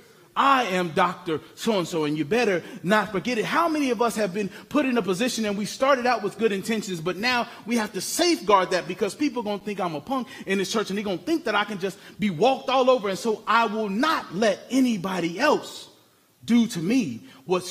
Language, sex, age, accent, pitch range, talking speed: English, male, 30-49, American, 175-240 Hz, 245 wpm